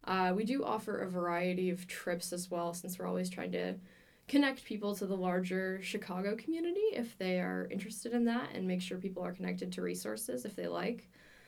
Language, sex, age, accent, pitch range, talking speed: English, female, 10-29, American, 180-215 Hz, 205 wpm